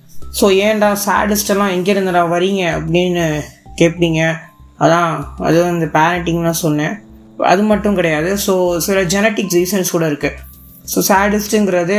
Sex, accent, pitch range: female, native, 155-180 Hz